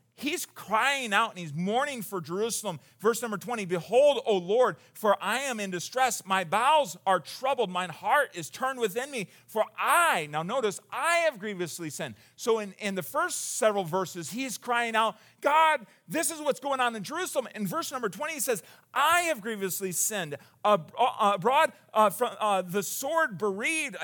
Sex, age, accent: male, 40-59, American